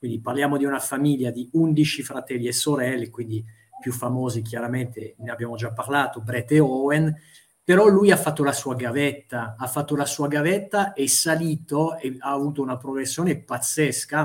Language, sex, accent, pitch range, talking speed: Italian, male, native, 125-155 Hz, 170 wpm